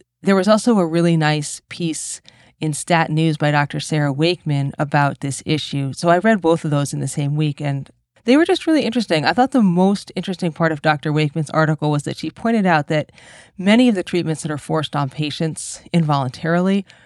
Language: English